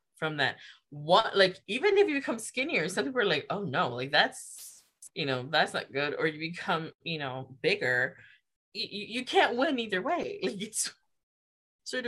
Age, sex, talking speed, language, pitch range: 20-39, female, 185 wpm, English, 135-180 Hz